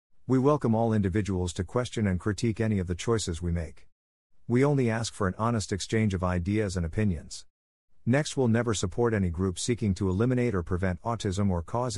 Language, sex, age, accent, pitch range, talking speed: English, male, 50-69, American, 85-115 Hz, 195 wpm